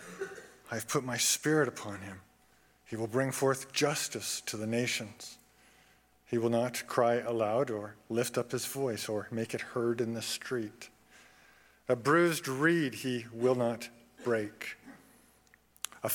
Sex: male